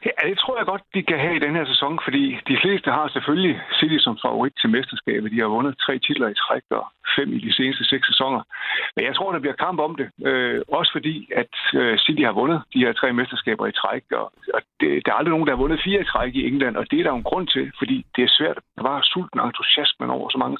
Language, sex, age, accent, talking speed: Danish, male, 60-79, native, 270 wpm